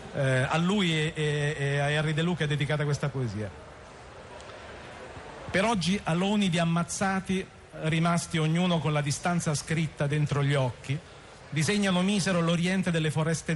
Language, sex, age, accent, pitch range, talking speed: Italian, male, 40-59, native, 140-180 Hz, 140 wpm